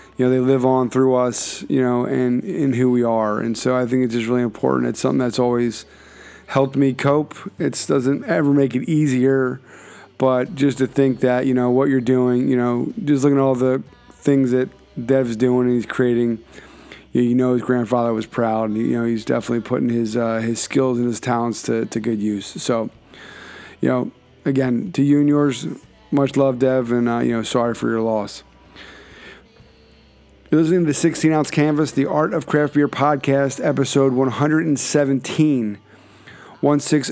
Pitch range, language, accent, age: 125-145 Hz, English, American, 20-39